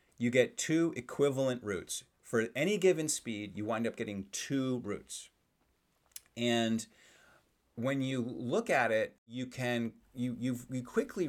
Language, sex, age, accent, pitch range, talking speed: English, male, 30-49, American, 105-135 Hz, 145 wpm